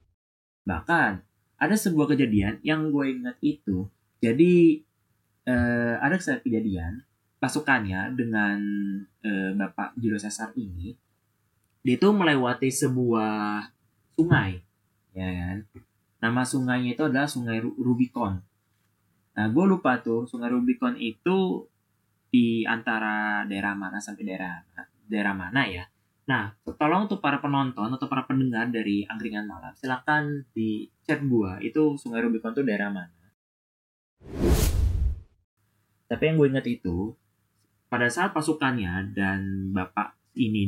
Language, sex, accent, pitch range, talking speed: Indonesian, male, native, 100-125 Hz, 120 wpm